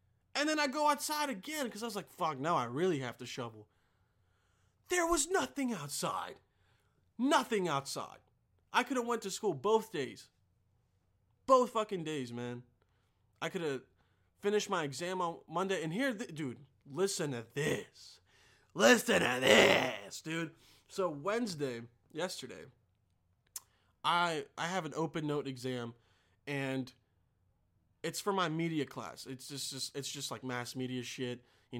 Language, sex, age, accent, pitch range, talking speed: English, male, 20-39, American, 120-180 Hz, 150 wpm